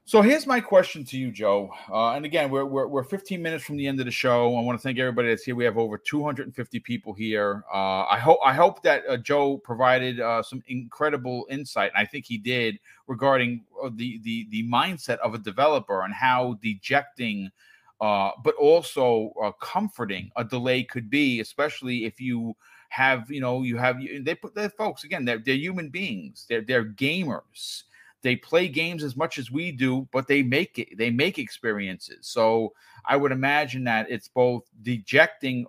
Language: English